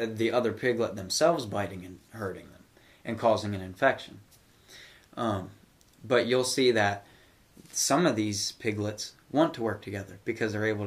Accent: American